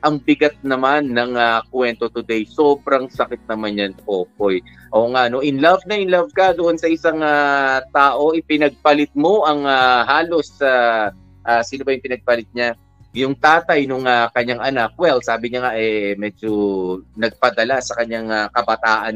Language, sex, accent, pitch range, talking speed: Filipino, male, native, 120-150 Hz, 180 wpm